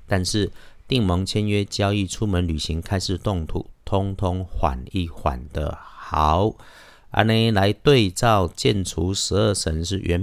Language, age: Chinese, 50-69